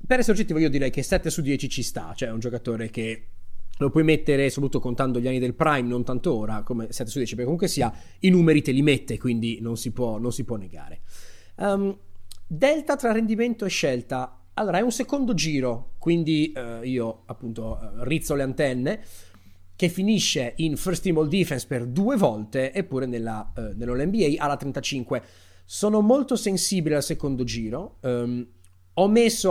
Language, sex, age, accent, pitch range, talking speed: Italian, male, 30-49, native, 115-170 Hz, 190 wpm